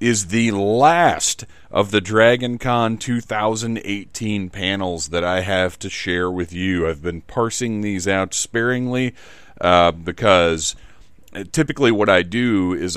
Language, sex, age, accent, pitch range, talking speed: English, male, 40-59, American, 90-115 Hz, 135 wpm